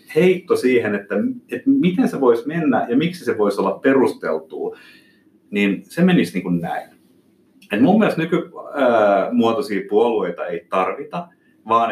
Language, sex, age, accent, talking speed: Finnish, male, 30-49, native, 140 wpm